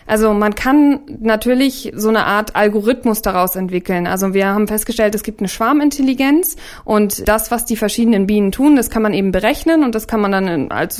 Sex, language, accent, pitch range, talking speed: female, German, German, 195-240 Hz, 195 wpm